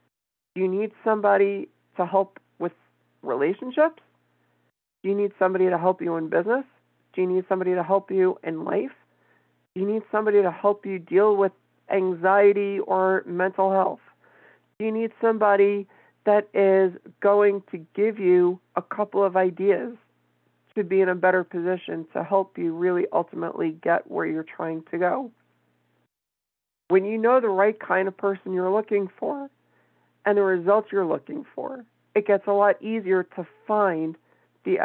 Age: 50-69